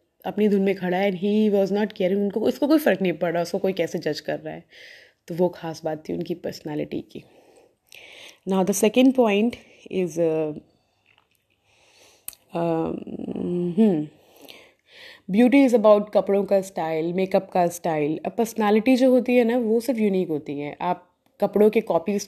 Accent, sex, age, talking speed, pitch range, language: native, female, 20-39, 165 wpm, 170-215 Hz, Hindi